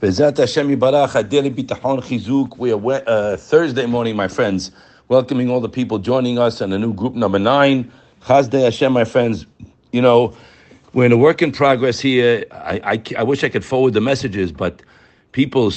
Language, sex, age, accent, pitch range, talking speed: English, male, 60-79, American, 100-130 Hz, 170 wpm